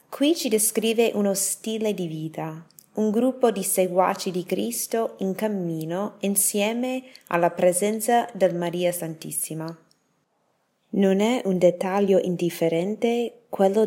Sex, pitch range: female, 165-205 Hz